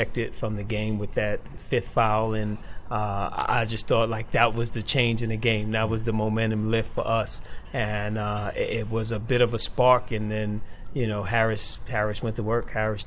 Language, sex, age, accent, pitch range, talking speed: English, male, 30-49, American, 105-115 Hz, 210 wpm